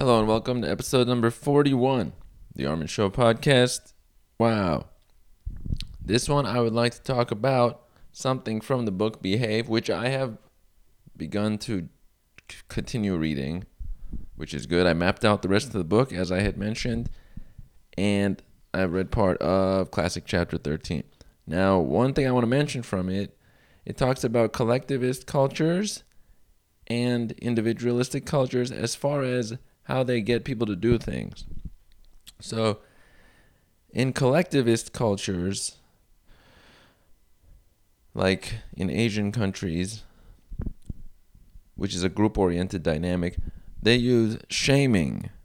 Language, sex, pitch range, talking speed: English, male, 95-120 Hz, 135 wpm